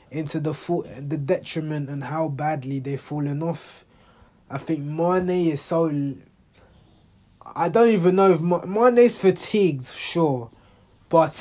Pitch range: 140-195 Hz